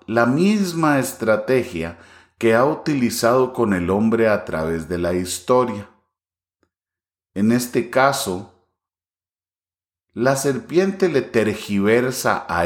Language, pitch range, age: English, 90-125 Hz, 40-59